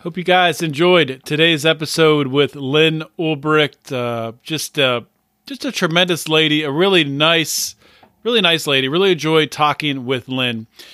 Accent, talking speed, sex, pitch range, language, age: American, 150 wpm, male, 130-160 Hz, English, 40-59